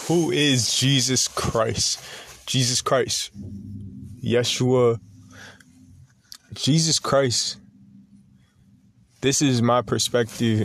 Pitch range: 105-125 Hz